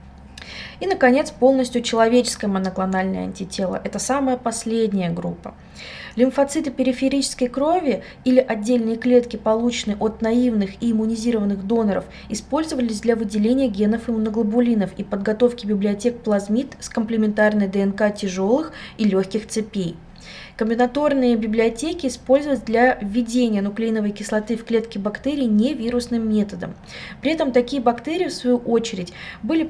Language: Russian